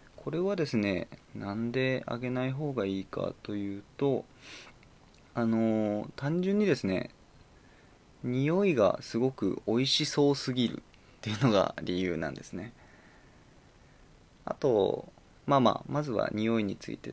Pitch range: 100-145 Hz